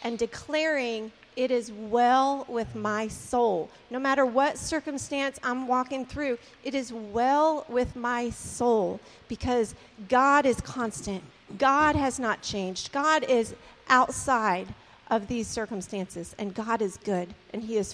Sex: female